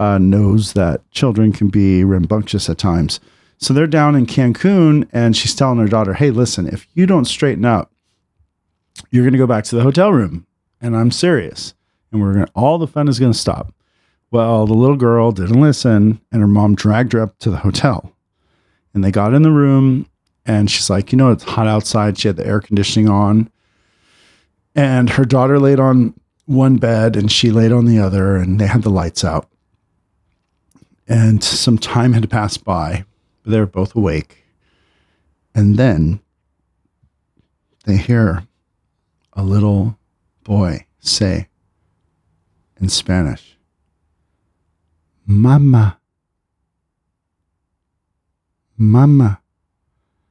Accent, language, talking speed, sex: American, English, 150 wpm, male